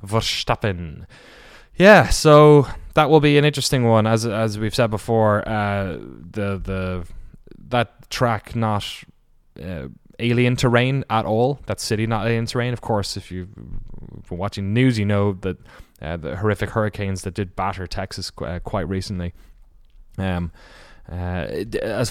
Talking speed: 145 wpm